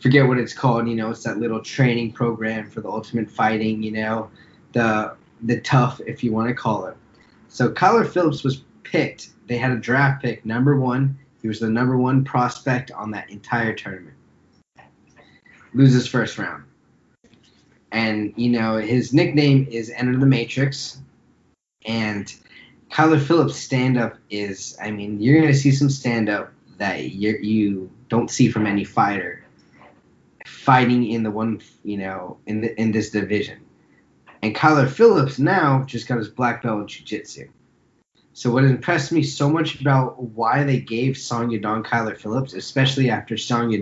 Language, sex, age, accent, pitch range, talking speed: English, male, 20-39, American, 110-135 Hz, 165 wpm